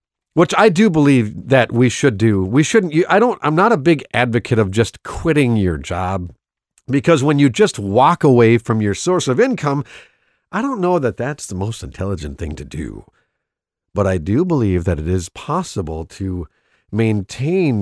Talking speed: 180 wpm